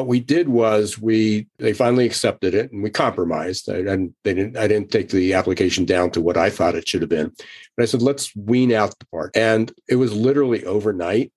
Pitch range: 105-125 Hz